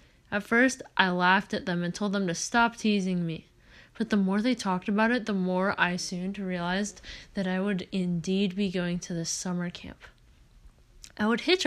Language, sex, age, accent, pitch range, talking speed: English, female, 10-29, American, 180-215 Hz, 195 wpm